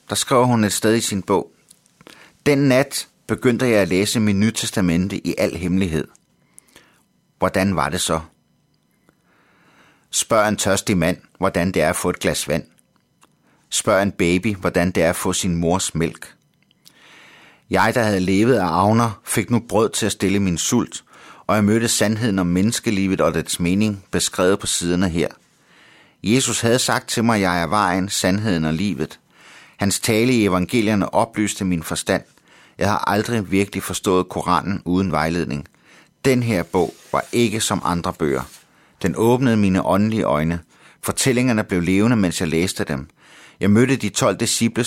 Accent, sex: native, male